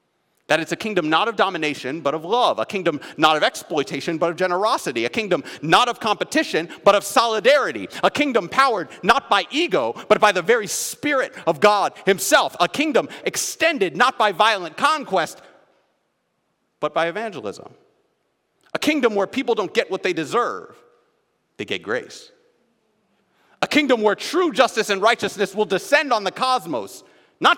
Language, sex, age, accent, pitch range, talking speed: English, male, 40-59, American, 190-290 Hz, 165 wpm